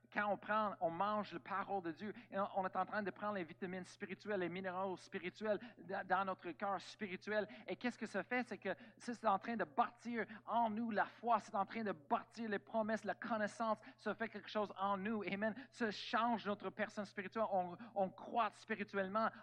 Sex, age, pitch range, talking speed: male, 50-69, 155-210 Hz, 205 wpm